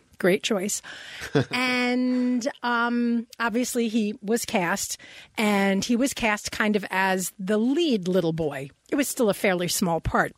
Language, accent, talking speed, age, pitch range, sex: English, American, 150 wpm, 40-59, 195-240 Hz, female